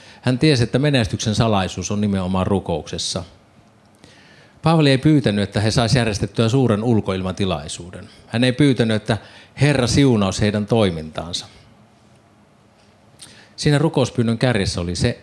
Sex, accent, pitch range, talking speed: male, native, 95-115 Hz, 120 wpm